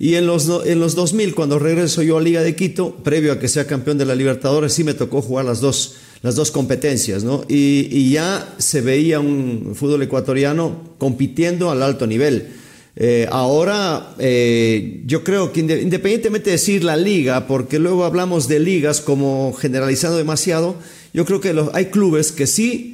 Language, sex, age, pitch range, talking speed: English, male, 50-69, 130-165 Hz, 175 wpm